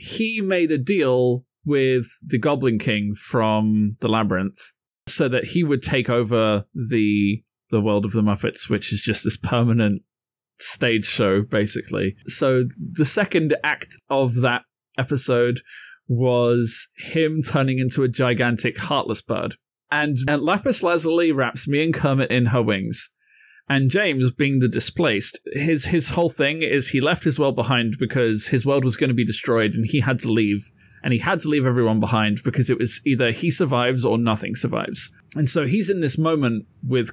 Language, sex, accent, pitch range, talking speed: English, male, British, 115-145 Hz, 175 wpm